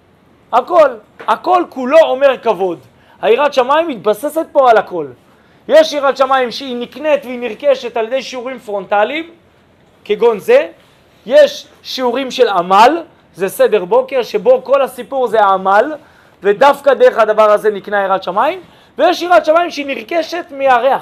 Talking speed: 140 wpm